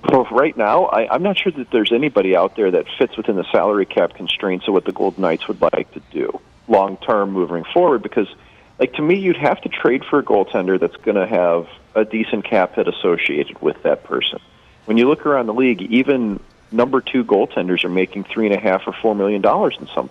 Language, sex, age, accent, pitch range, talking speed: English, male, 40-59, American, 95-135 Hz, 225 wpm